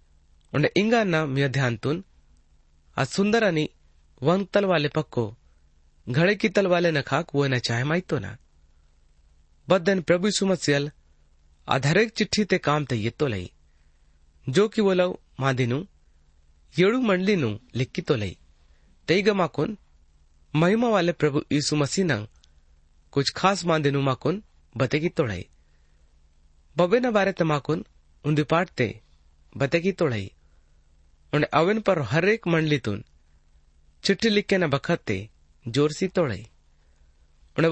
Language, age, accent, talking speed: Hindi, 30-49, native, 115 wpm